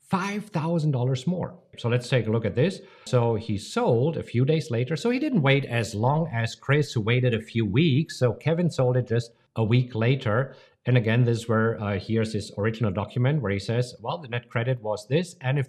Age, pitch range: 50-69, 115-160 Hz